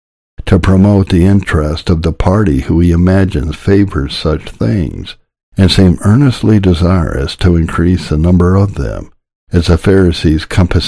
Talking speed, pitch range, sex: 150 wpm, 80-100 Hz, male